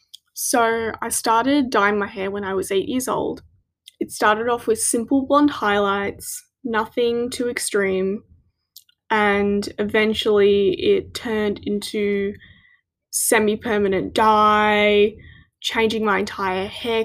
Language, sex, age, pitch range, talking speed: English, female, 10-29, 210-270 Hz, 115 wpm